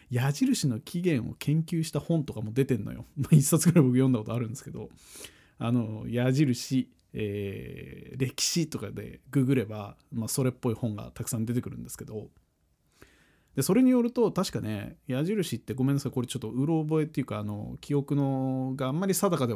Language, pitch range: Japanese, 120-170 Hz